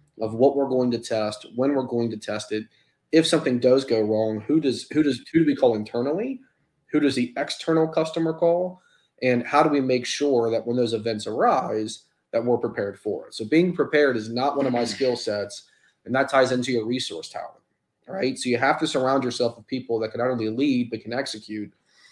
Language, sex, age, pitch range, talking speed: English, male, 30-49, 115-135 Hz, 220 wpm